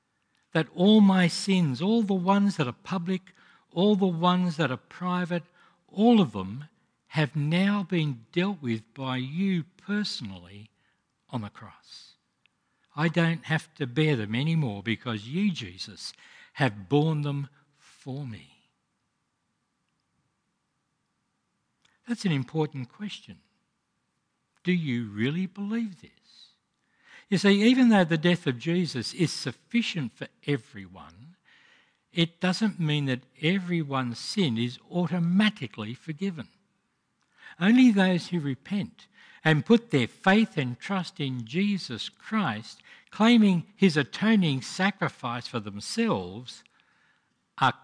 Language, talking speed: English, 120 wpm